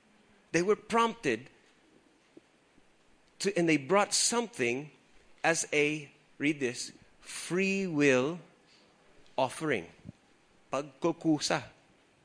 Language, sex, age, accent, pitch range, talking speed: English, male, 30-49, Filipino, 115-145 Hz, 80 wpm